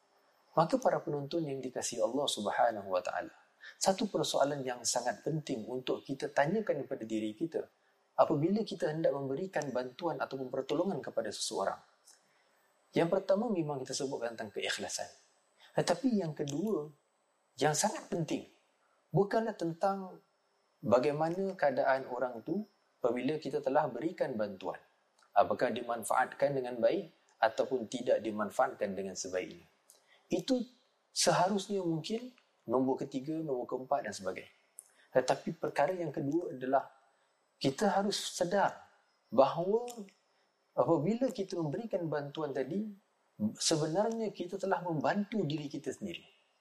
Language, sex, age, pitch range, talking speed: Malay, male, 30-49, 145-200 Hz, 115 wpm